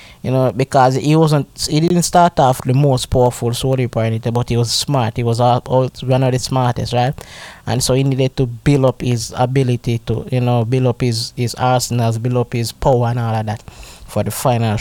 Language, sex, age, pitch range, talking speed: English, male, 20-39, 120-150 Hz, 225 wpm